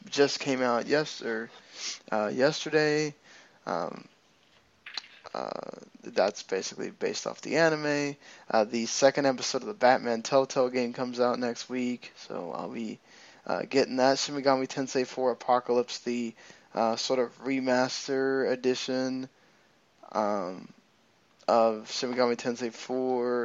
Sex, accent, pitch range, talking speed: male, American, 120-135 Hz, 125 wpm